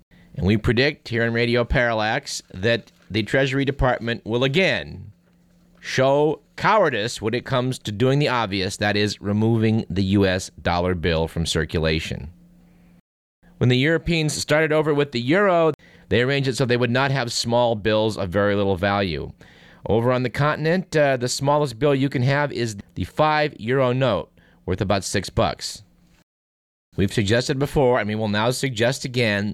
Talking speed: 165 wpm